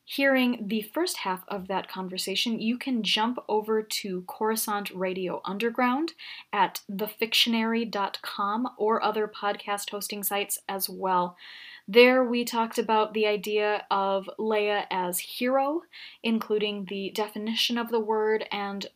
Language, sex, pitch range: English, female, 195-230 Hz